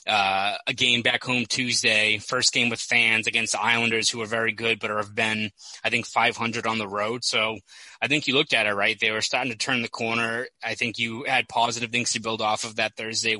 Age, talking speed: 20-39, 235 wpm